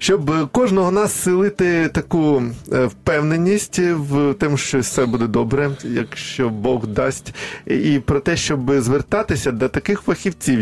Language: Ukrainian